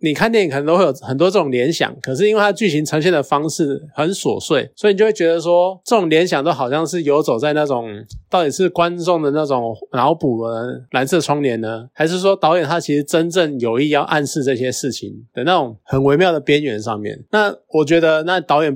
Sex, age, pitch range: male, 20-39, 125-165 Hz